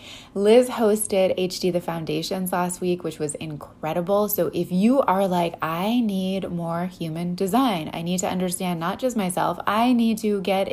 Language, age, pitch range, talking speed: English, 20-39, 170-215 Hz, 175 wpm